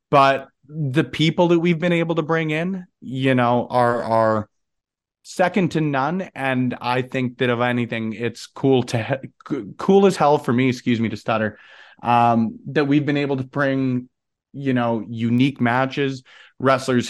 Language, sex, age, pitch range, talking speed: English, male, 30-49, 115-140 Hz, 165 wpm